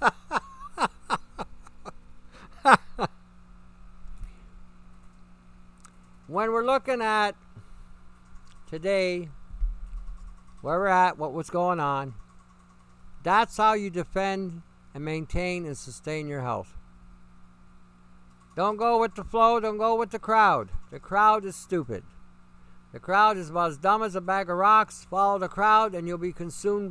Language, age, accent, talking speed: English, 60-79, American, 120 wpm